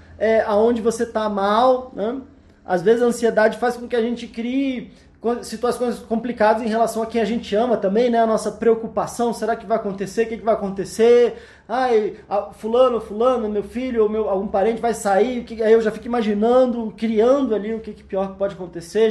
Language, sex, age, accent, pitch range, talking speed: Portuguese, male, 20-39, Brazilian, 215-260 Hz, 205 wpm